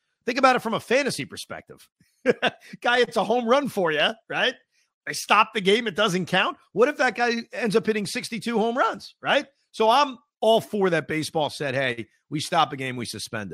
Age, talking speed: 40-59, 210 wpm